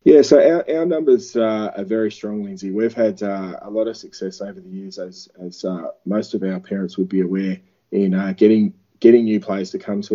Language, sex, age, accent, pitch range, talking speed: English, male, 20-39, Australian, 100-115 Hz, 230 wpm